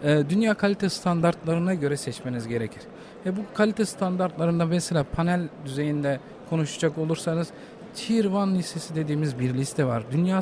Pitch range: 150-195 Hz